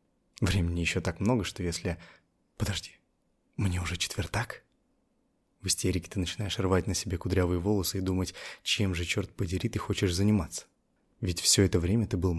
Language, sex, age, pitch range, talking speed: Russian, male, 20-39, 85-100 Hz, 165 wpm